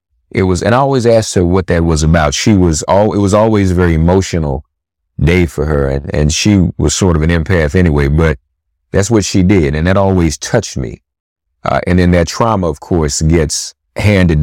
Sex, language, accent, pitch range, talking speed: male, English, American, 75-90 Hz, 210 wpm